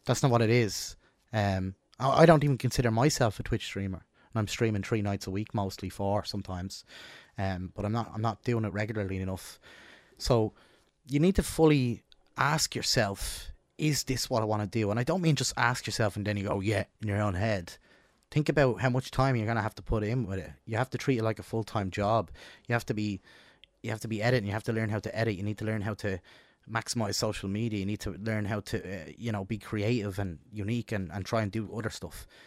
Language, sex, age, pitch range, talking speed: English, male, 20-39, 100-120 Hz, 245 wpm